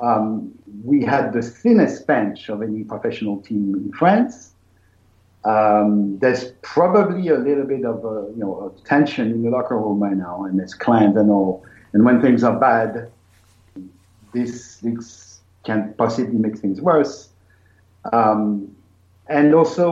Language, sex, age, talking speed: English, male, 50-69, 150 wpm